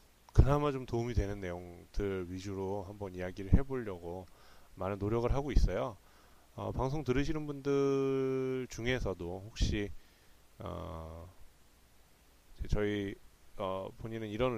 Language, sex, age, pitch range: Korean, male, 30-49, 90-125 Hz